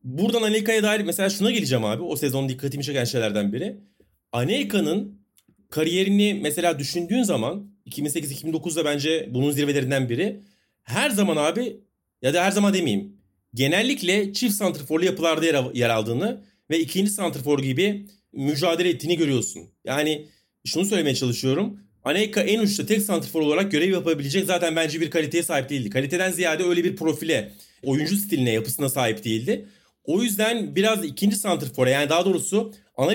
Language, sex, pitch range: Turkish, male, 145-200 Hz